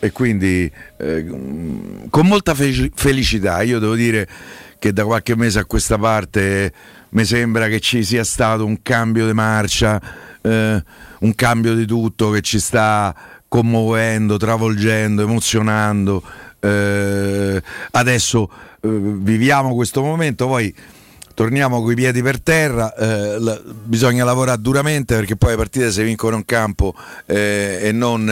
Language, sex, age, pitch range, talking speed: Italian, male, 50-69, 105-130 Hz, 140 wpm